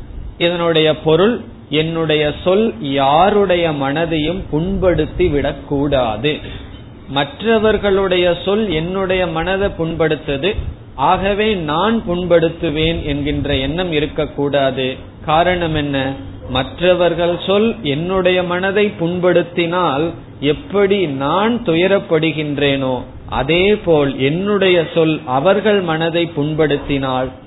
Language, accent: Tamil, native